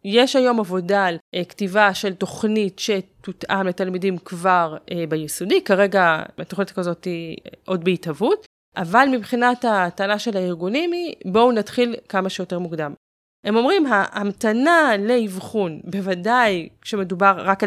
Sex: female